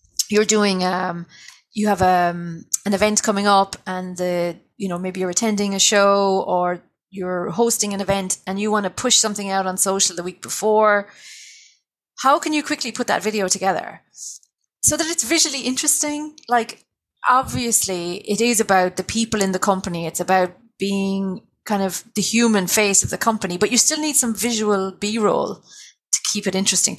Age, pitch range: 30-49, 185-235 Hz